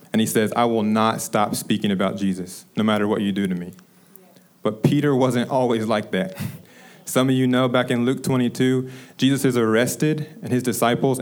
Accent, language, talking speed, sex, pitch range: American, English, 200 wpm, male, 110-130 Hz